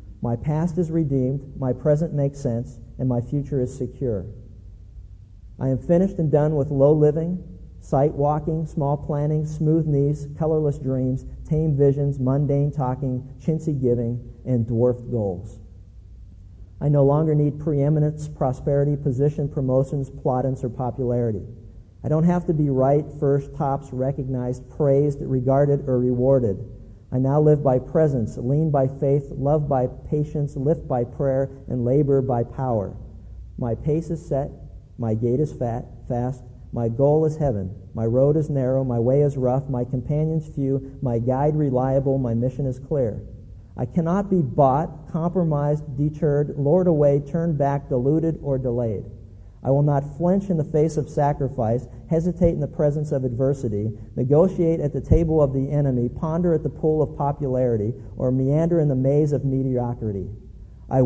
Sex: male